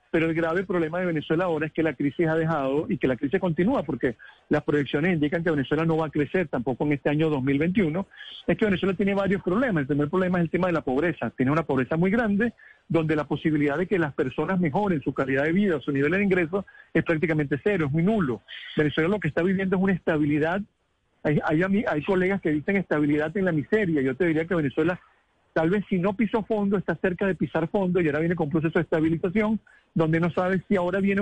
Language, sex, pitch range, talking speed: Spanish, male, 150-190 Hz, 235 wpm